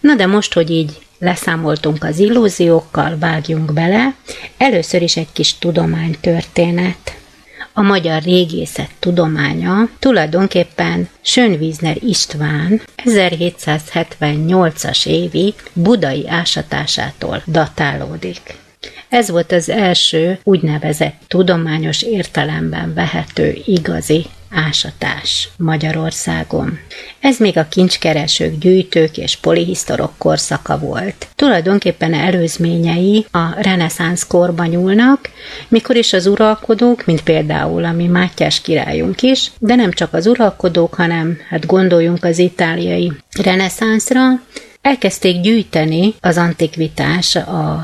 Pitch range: 160-200 Hz